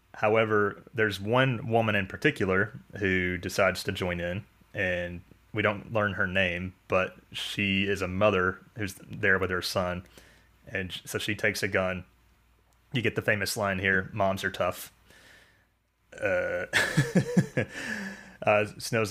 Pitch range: 95-110 Hz